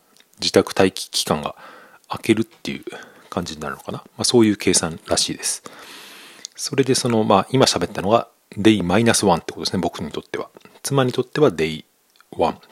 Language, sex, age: Japanese, male, 40-59